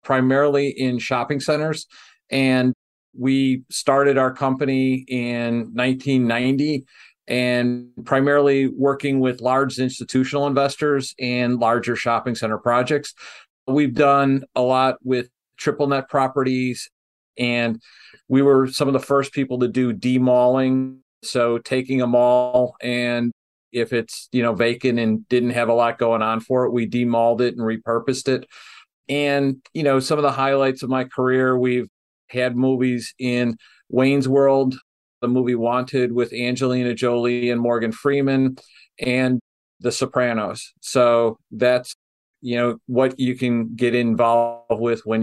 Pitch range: 120-135 Hz